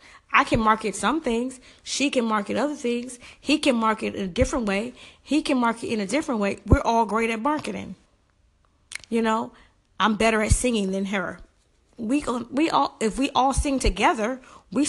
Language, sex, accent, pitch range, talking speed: English, female, American, 205-270 Hz, 185 wpm